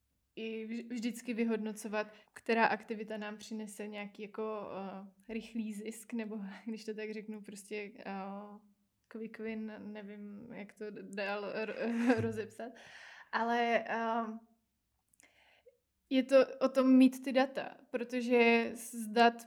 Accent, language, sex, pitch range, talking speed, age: native, Czech, female, 210-230 Hz, 105 wpm, 20-39